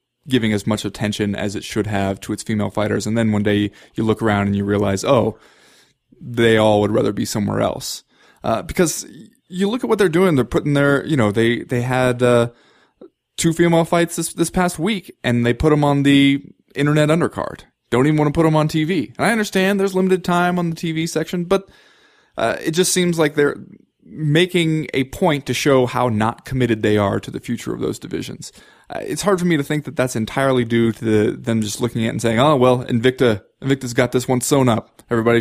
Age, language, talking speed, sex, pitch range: 20-39, English, 225 wpm, male, 115-155 Hz